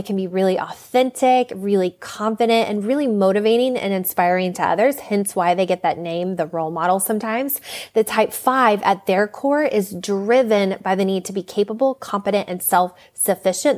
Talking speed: 185 wpm